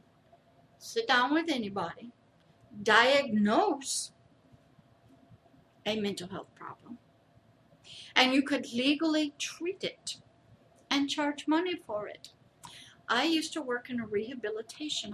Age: 60-79